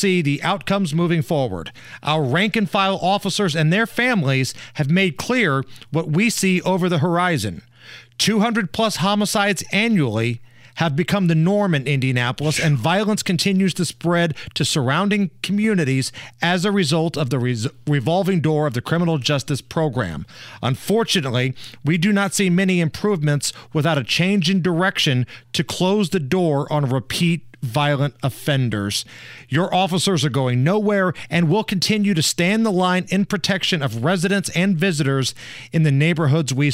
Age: 40-59